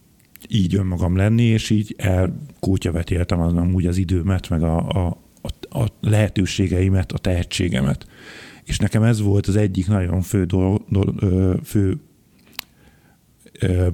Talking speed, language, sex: 130 wpm, Hungarian, male